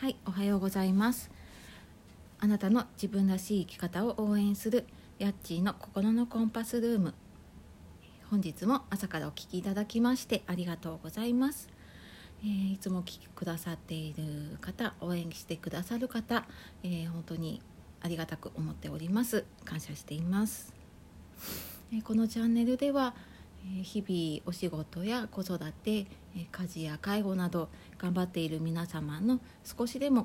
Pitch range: 160-215 Hz